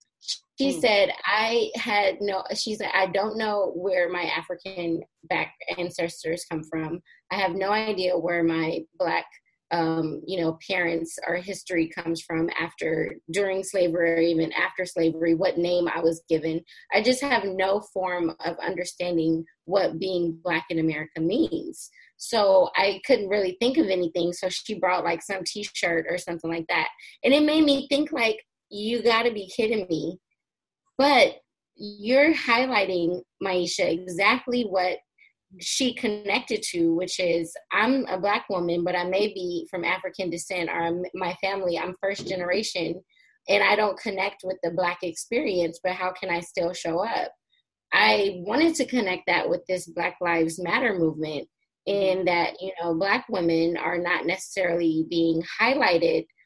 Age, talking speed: 20-39, 160 wpm